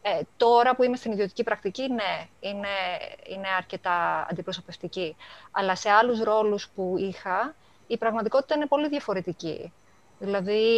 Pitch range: 190-235 Hz